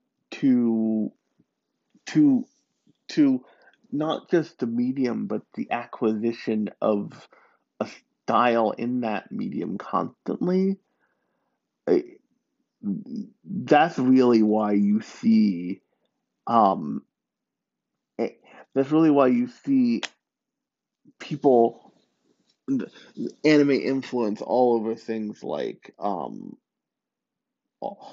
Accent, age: American, 30-49